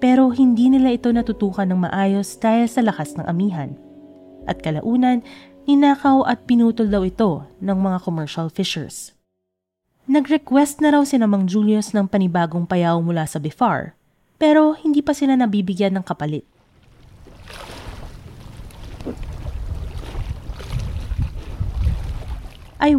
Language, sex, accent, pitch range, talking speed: Filipino, female, native, 175-245 Hz, 110 wpm